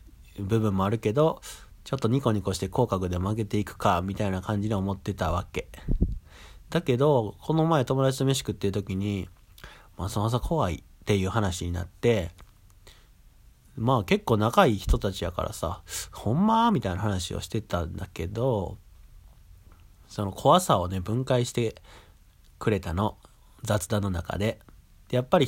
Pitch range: 90-125 Hz